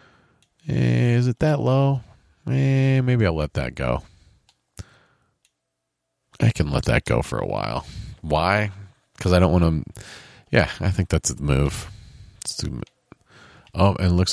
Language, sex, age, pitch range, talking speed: English, male, 40-59, 80-105 Hz, 145 wpm